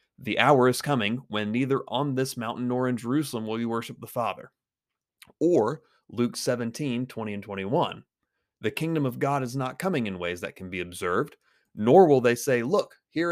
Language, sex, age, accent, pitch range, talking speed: English, male, 30-49, American, 105-135 Hz, 190 wpm